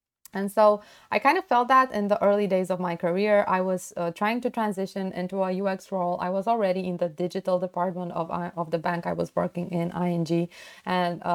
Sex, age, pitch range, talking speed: female, 20-39, 180-230 Hz, 215 wpm